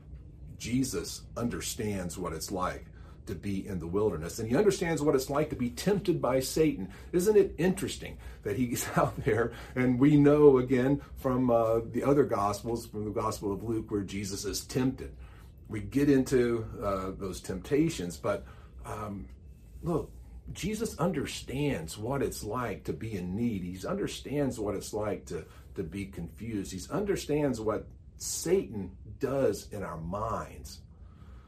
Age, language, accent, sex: 50-69, English, American, male